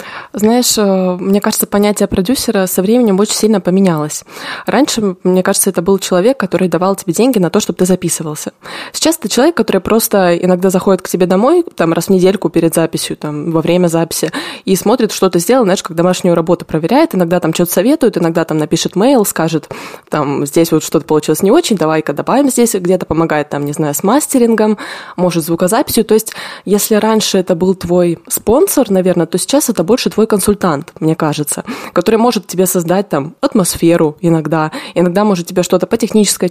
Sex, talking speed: female, 185 wpm